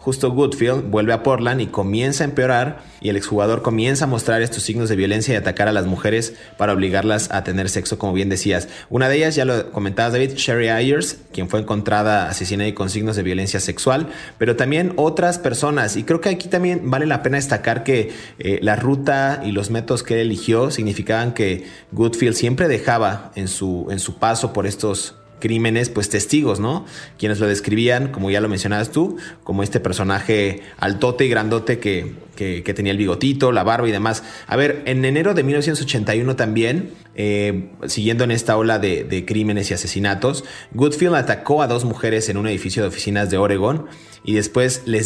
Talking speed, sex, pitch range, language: 195 wpm, male, 100-130 Hz, Spanish